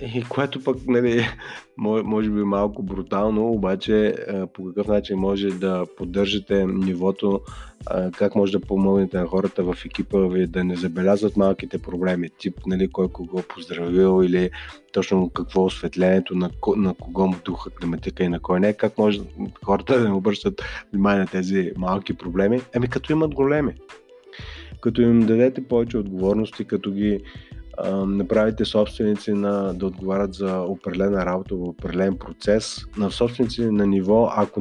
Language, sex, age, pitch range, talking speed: Bulgarian, male, 30-49, 95-115 Hz, 155 wpm